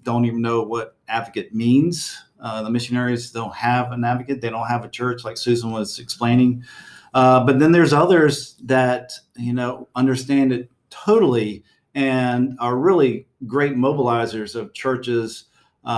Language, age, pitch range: English, 50-69, 120-140 Hz